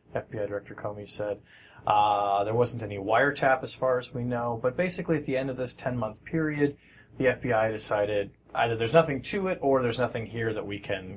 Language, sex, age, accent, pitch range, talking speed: English, male, 30-49, American, 100-125 Hz, 210 wpm